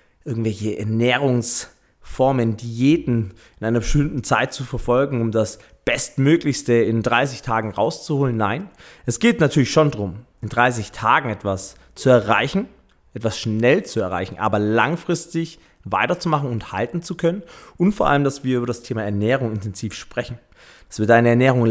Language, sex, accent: German, male, German